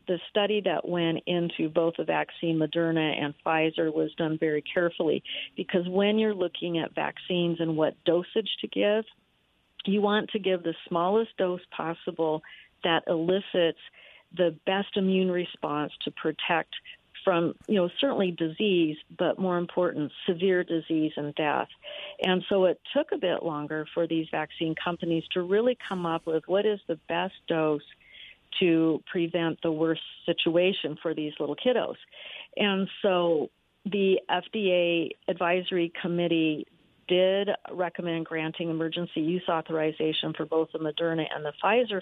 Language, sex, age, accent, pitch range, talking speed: English, female, 50-69, American, 160-190 Hz, 145 wpm